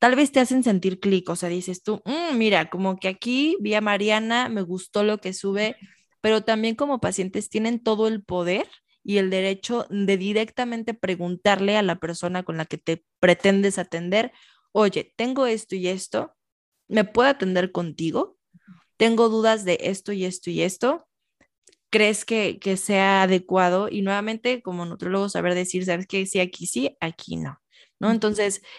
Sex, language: female, Spanish